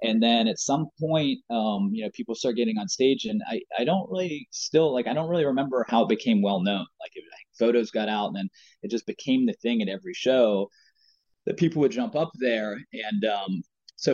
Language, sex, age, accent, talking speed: English, male, 20-39, American, 230 wpm